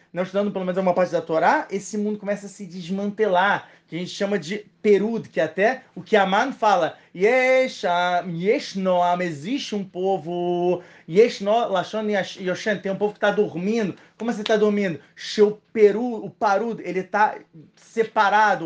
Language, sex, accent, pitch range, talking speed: Portuguese, male, Brazilian, 160-205 Hz, 165 wpm